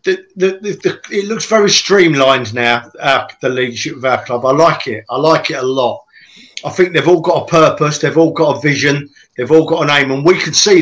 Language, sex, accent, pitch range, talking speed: English, male, British, 135-175 Hz, 245 wpm